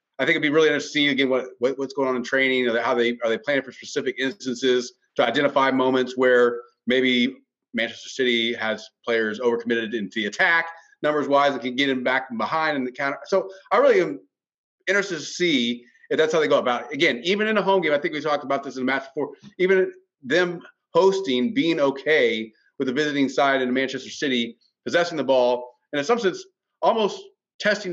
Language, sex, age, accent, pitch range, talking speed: English, male, 30-49, American, 130-170 Hz, 215 wpm